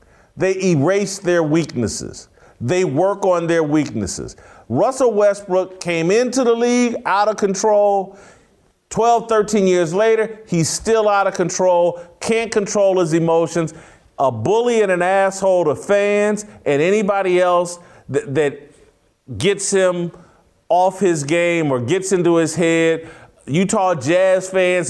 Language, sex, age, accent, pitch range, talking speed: English, male, 40-59, American, 160-205 Hz, 135 wpm